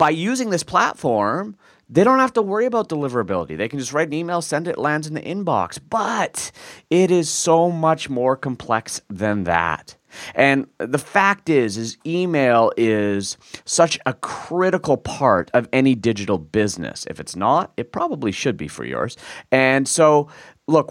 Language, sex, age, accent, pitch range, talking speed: English, male, 30-49, American, 100-160 Hz, 170 wpm